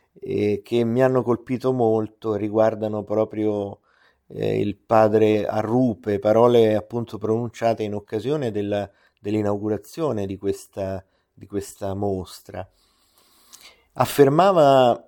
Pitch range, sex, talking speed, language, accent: 105-125 Hz, male, 90 wpm, Italian, native